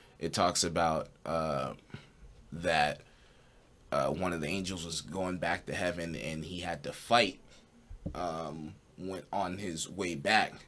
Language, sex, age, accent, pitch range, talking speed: English, male, 20-39, American, 85-120 Hz, 145 wpm